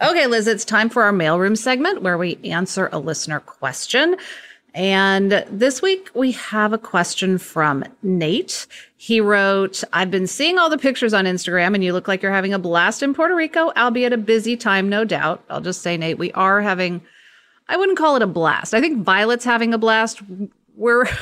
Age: 30-49